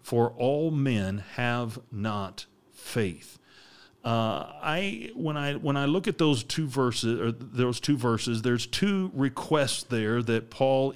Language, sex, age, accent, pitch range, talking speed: English, male, 40-59, American, 115-135 Hz, 120 wpm